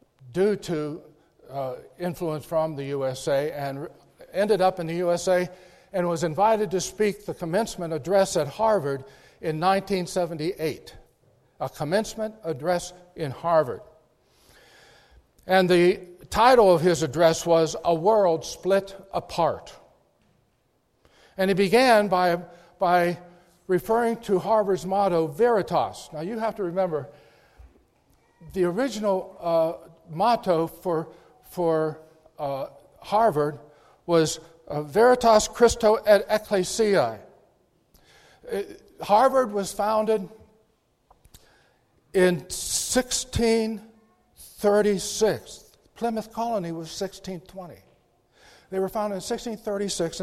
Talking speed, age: 100 wpm, 60-79